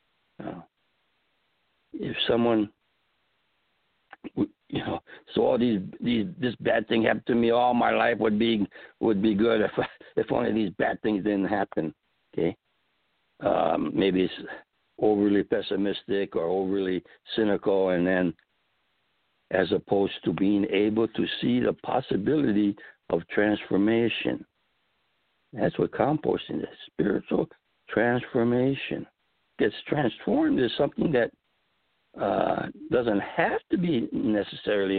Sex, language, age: male, English, 60-79